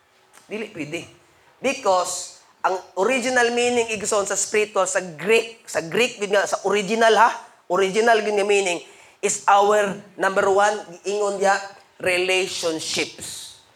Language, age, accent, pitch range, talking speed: Filipino, 20-39, native, 190-275 Hz, 115 wpm